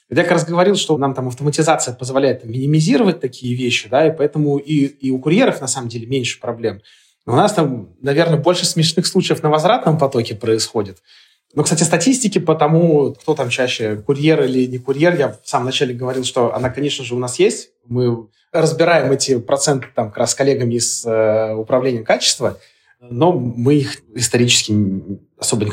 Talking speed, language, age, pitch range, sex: 180 wpm, Russian, 30-49, 115-155 Hz, male